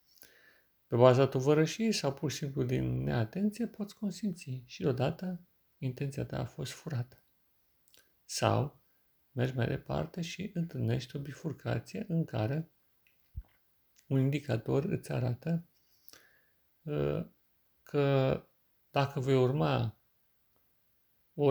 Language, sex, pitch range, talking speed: Romanian, male, 120-155 Hz, 105 wpm